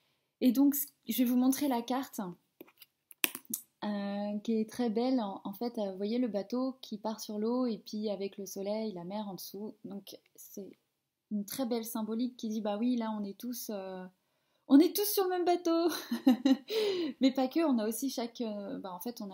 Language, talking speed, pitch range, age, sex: French, 210 wpm, 195-245 Hz, 20-39, female